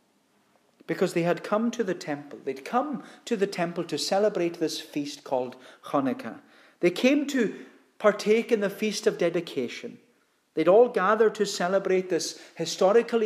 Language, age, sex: English, 40-59, male